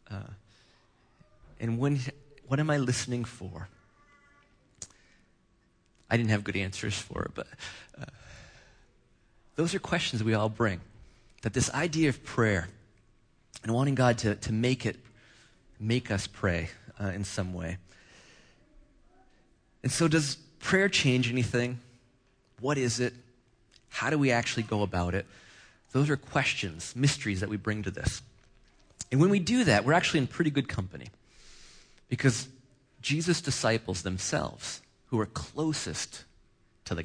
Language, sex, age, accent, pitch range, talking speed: English, male, 30-49, American, 100-140 Hz, 140 wpm